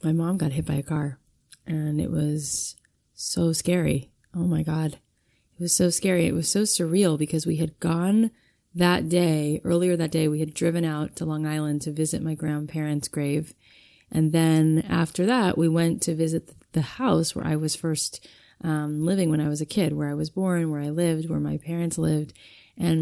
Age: 20-39